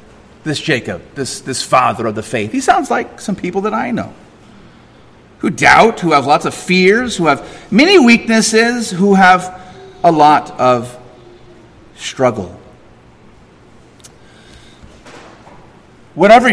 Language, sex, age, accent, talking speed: English, male, 40-59, American, 125 wpm